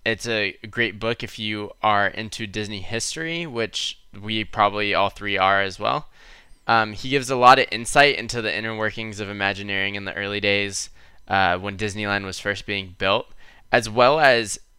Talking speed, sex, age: 185 wpm, male, 20-39